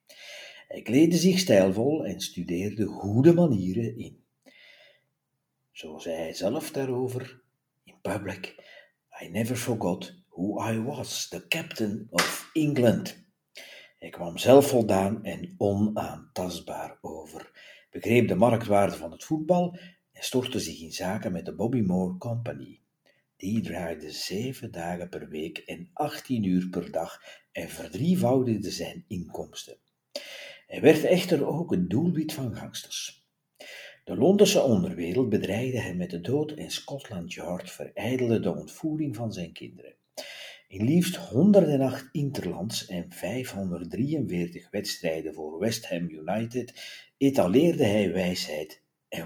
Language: Dutch